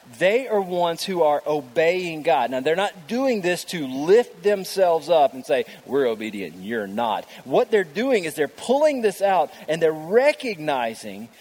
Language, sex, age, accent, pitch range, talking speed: English, male, 30-49, American, 140-195 Hz, 175 wpm